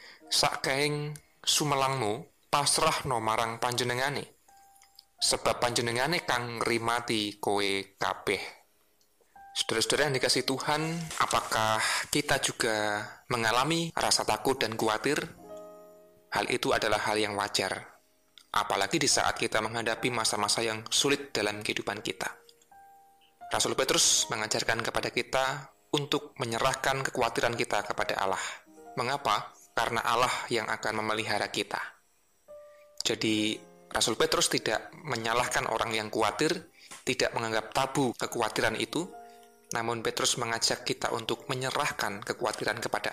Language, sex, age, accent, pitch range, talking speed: Indonesian, male, 20-39, native, 110-155 Hz, 110 wpm